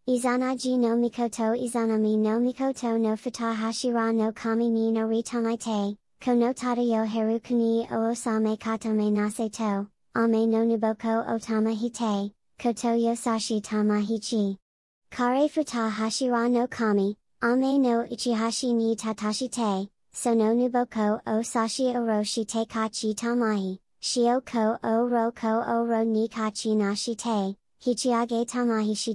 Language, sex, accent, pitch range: Japanese, male, American, 215-240 Hz